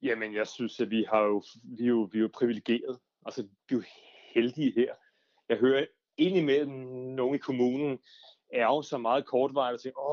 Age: 30-49